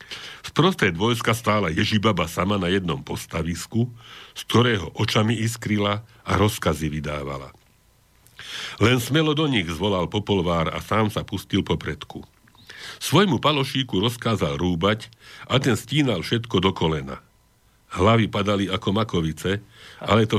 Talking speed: 125 wpm